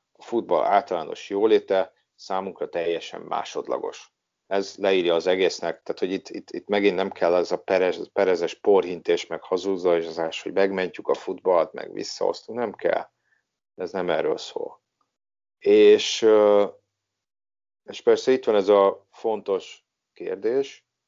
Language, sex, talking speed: Hungarian, male, 135 wpm